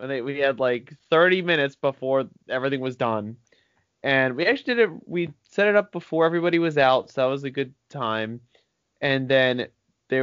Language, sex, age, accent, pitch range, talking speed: English, male, 20-39, American, 125-160 Hz, 190 wpm